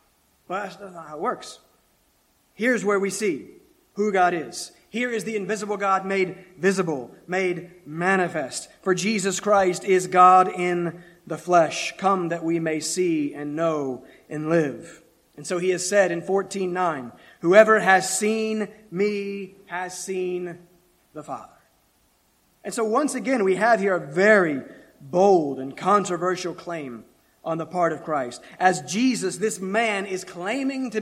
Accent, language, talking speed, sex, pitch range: American, English, 155 wpm, male, 170-210 Hz